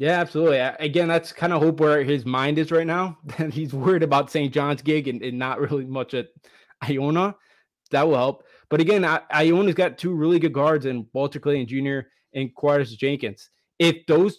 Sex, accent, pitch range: male, American, 135-170 Hz